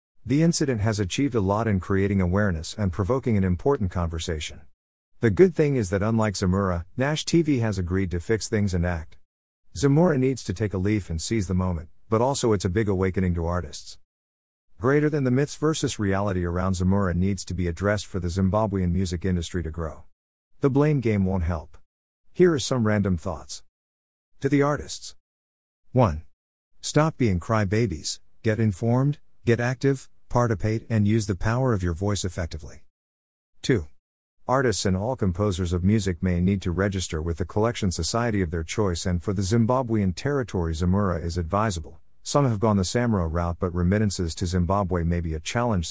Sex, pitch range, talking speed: male, 85-110 Hz, 180 wpm